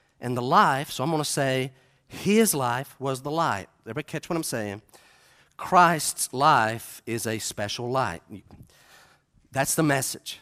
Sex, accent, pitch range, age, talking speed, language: male, American, 135-220 Hz, 50-69, 155 wpm, English